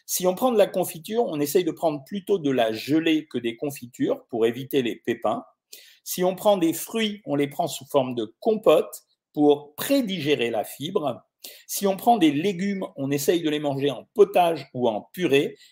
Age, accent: 50-69, French